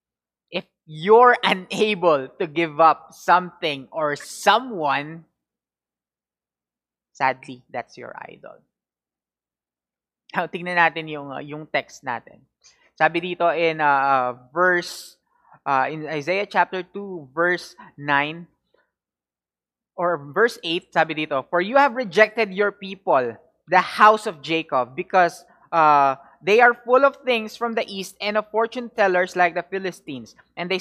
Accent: Filipino